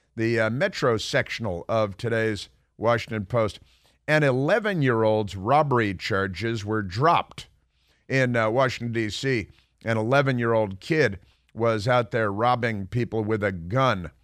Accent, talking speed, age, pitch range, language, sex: American, 120 wpm, 50-69, 105-125 Hz, English, male